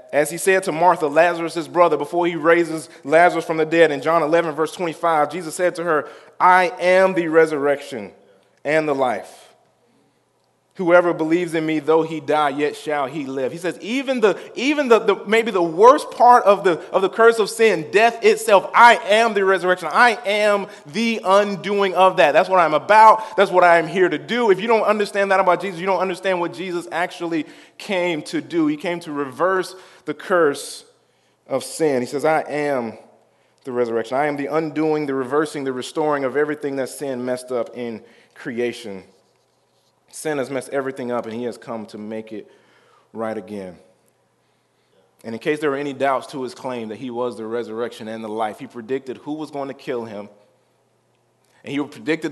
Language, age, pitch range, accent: English, 20-39, 135-180 Hz, American